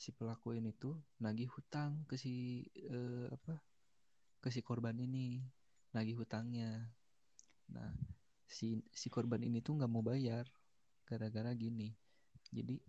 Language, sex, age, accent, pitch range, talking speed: Indonesian, male, 20-39, native, 110-125 Hz, 130 wpm